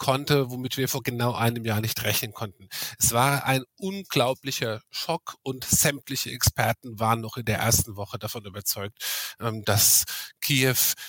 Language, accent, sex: German, German, male